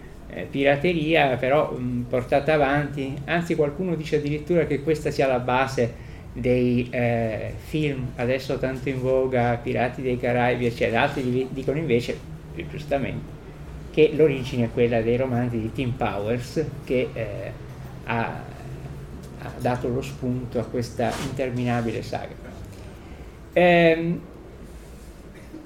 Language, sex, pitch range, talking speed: Italian, male, 120-160 Hz, 120 wpm